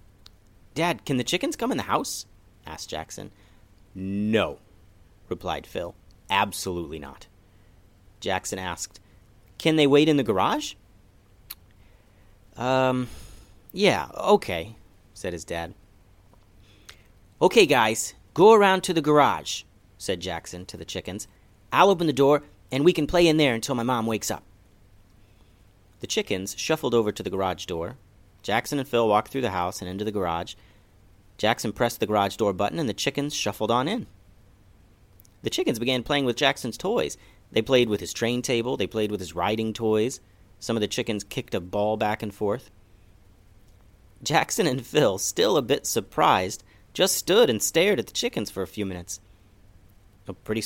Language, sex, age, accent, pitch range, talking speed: English, male, 30-49, American, 95-120 Hz, 160 wpm